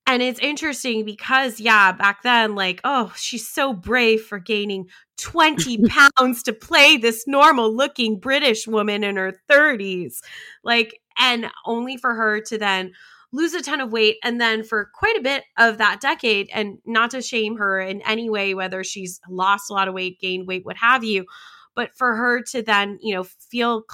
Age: 20-39